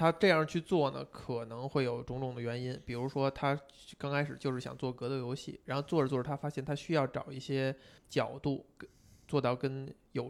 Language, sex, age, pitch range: Chinese, male, 20-39, 130-150 Hz